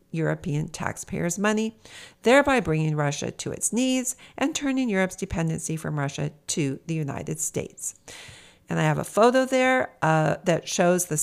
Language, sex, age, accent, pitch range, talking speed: English, female, 50-69, American, 155-210 Hz, 155 wpm